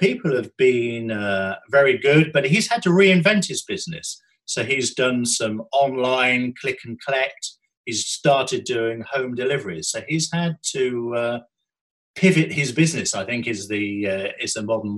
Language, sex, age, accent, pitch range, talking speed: English, male, 50-69, British, 115-150 Hz, 170 wpm